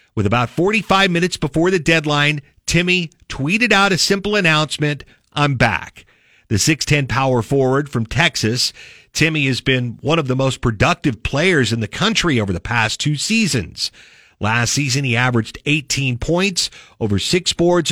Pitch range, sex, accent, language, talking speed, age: 120-165 Hz, male, American, English, 155 wpm, 50-69